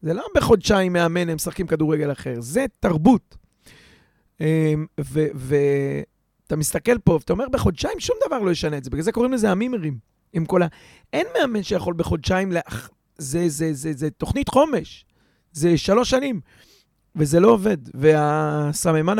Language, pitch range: Hebrew, 150-205 Hz